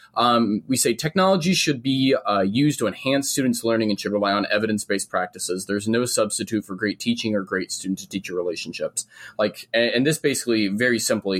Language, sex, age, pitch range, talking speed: English, male, 20-39, 100-120 Hz, 185 wpm